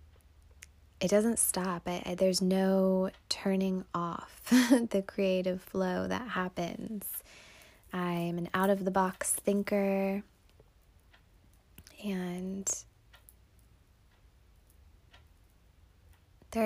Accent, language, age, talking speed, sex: American, English, 20-39, 65 wpm, female